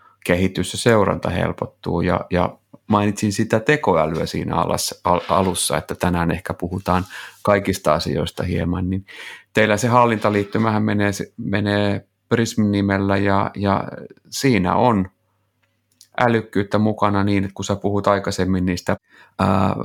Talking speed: 115 wpm